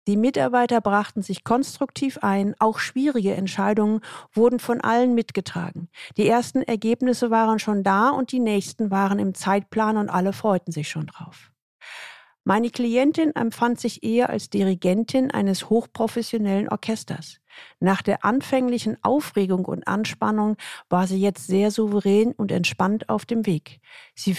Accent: German